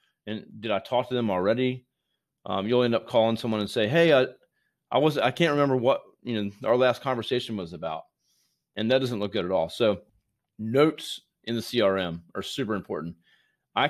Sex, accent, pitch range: male, American, 105-130 Hz